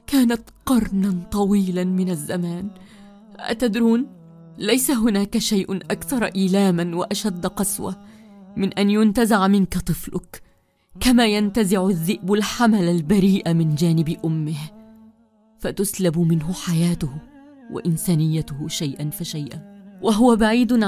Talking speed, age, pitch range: 100 wpm, 30-49, 175-235 Hz